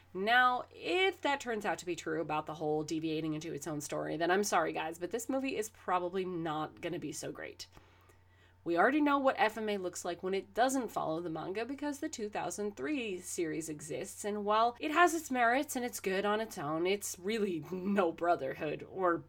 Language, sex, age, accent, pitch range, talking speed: English, female, 20-39, American, 170-265 Hz, 205 wpm